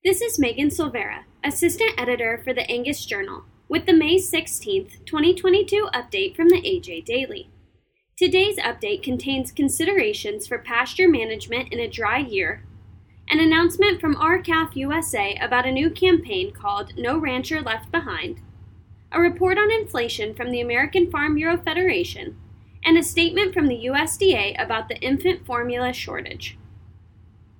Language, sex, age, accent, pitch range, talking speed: English, female, 10-29, American, 245-365 Hz, 145 wpm